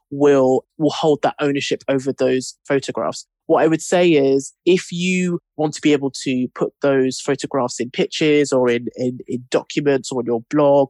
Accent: British